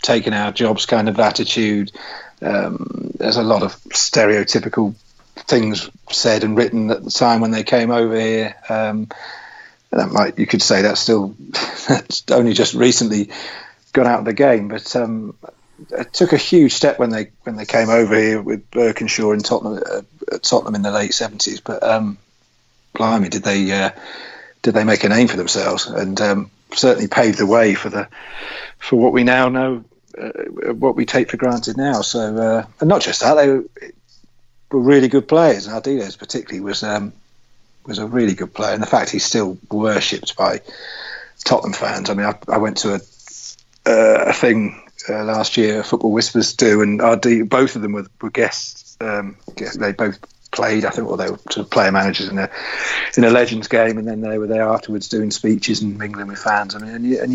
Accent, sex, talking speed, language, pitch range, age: British, male, 200 wpm, English, 105-120 Hz, 40-59